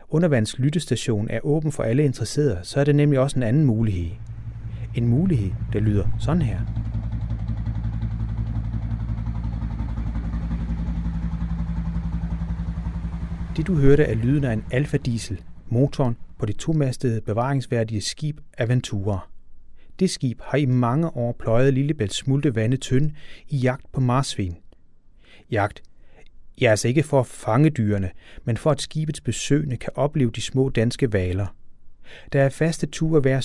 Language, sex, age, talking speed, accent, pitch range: Danish, male, 30-49, 135 wpm, native, 95-135 Hz